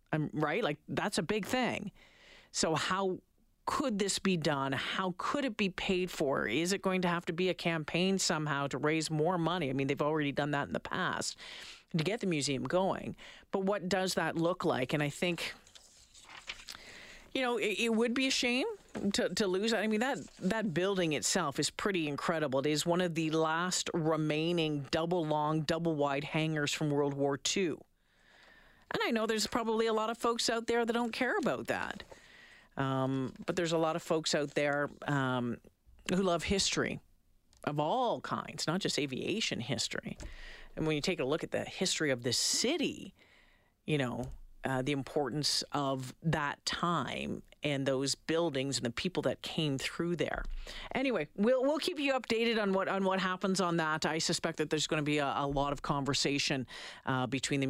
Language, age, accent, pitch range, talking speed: English, 40-59, American, 140-190 Hz, 195 wpm